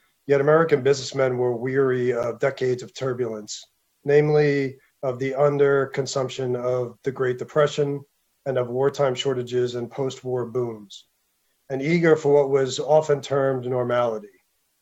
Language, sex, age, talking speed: Turkish, male, 40-59, 130 wpm